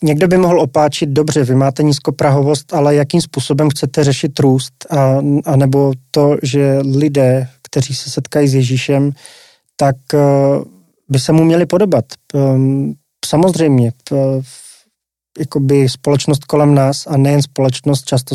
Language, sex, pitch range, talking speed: Slovak, male, 135-150 Hz, 130 wpm